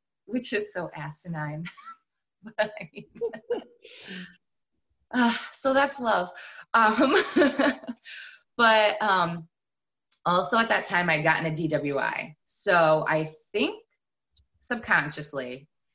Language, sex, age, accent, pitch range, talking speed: English, female, 20-39, American, 140-210 Hz, 85 wpm